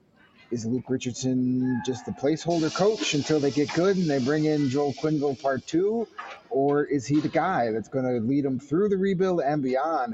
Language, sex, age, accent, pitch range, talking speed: English, male, 30-49, American, 115-145 Hz, 200 wpm